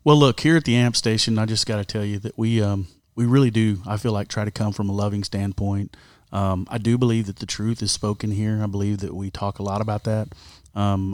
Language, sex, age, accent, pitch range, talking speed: English, male, 30-49, American, 100-115 Hz, 265 wpm